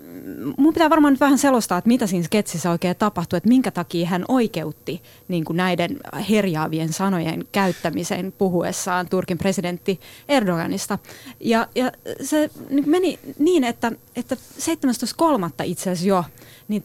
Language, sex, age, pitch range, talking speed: Finnish, female, 30-49, 180-250 Hz, 140 wpm